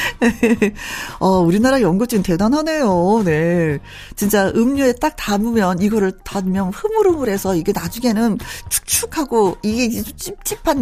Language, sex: Korean, female